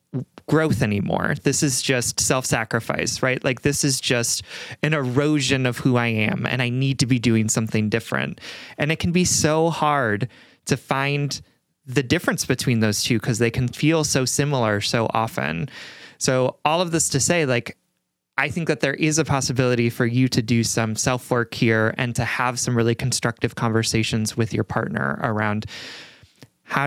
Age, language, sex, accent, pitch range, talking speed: 30-49, English, male, American, 120-150 Hz, 175 wpm